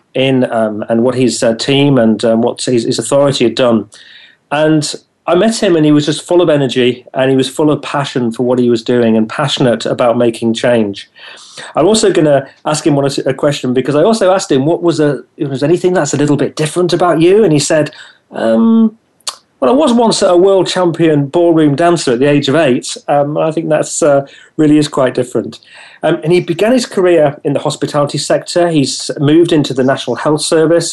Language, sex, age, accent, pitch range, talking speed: English, male, 40-59, British, 130-160 Hz, 215 wpm